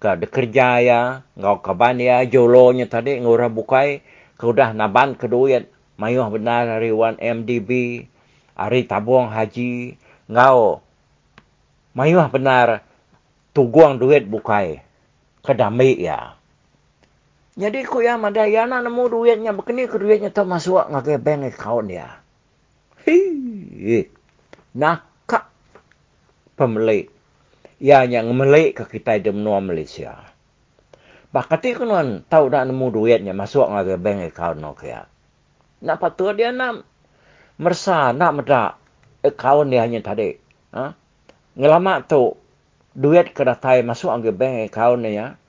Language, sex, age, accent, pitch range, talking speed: English, male, 50-69, Indonesian, 115-170 Hz, 110 wpm